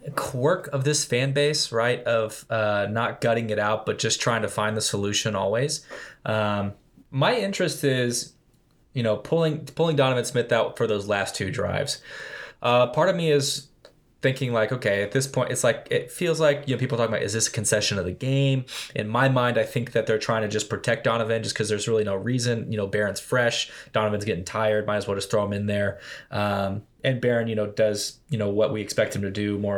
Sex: male